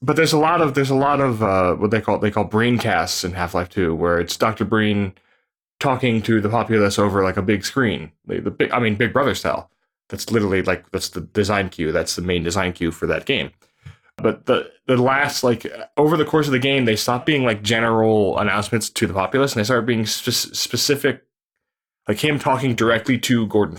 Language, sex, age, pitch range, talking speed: English, male, 20-39, 95-130 Hz, 220 wpm